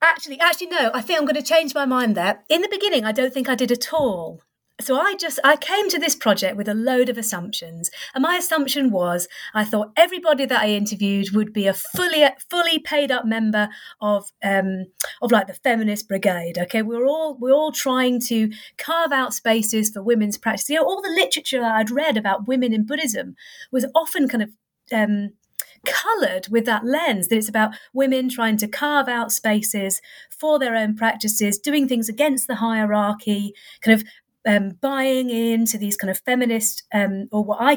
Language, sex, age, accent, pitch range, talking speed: English, female, 40-59, British, 210-280 Hz, 195 wpm